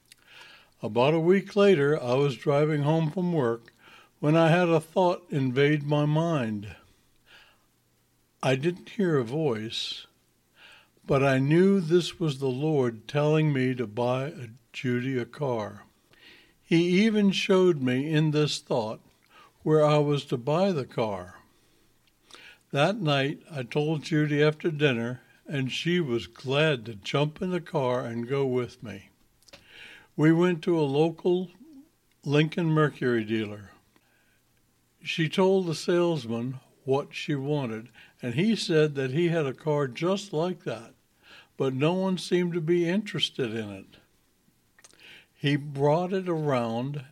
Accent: American